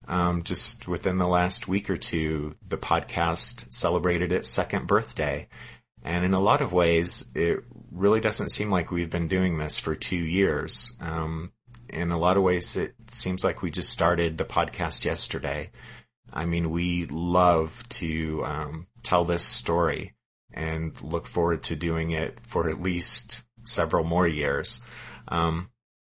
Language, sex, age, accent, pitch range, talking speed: English, male, 30-49, American, 80-95 Hz, 160 wpm